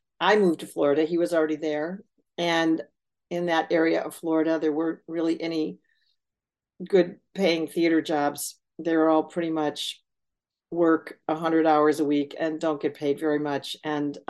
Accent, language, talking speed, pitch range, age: American, English, 160 wpm, 150-180 Hz, 50-69